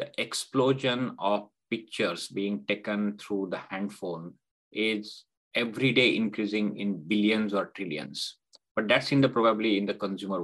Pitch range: 100-110 Hz